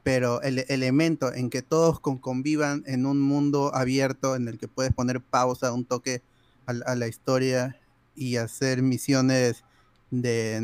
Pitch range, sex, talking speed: 125-155 Hz, male, 150 wpm